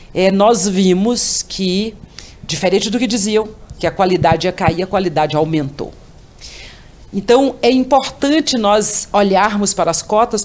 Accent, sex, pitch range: Brazilian, female, 175-230 Hz